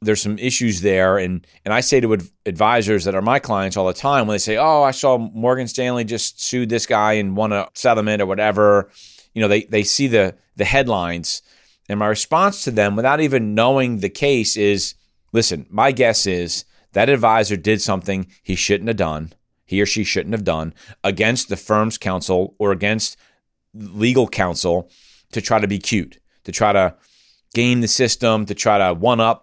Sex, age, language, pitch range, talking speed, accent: male, 40-59, English, 95-115 Hz, 195 wpm, American